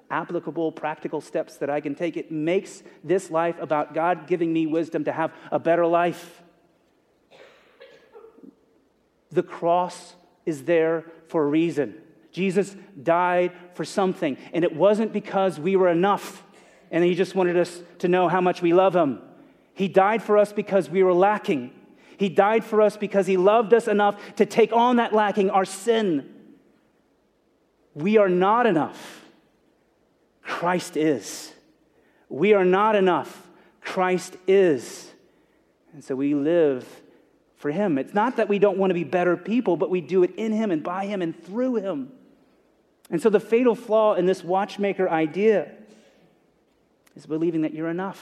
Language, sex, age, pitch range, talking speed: English, male, 30-49, 170-205 Hz, 160 wpm